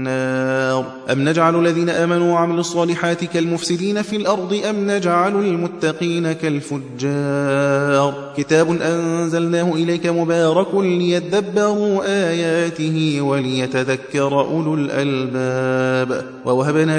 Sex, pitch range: male, 150-200 Hz